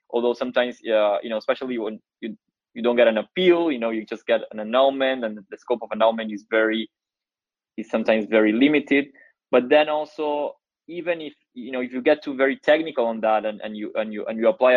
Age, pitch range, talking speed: 20-39, 110-135 Hz, 220 wpm